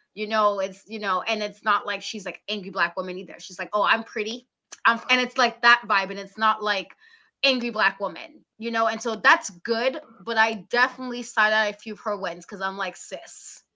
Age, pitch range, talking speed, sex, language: 20-39, 200-260 Hz, 225 wpm, female, English